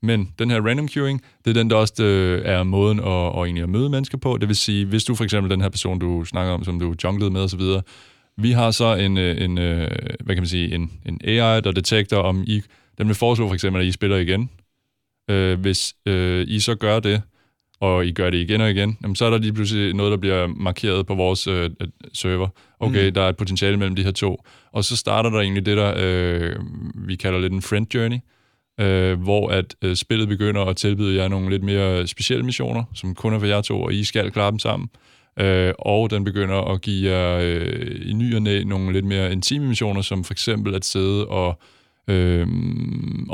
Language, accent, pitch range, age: Danish, native, 95-110 Hz, 20-39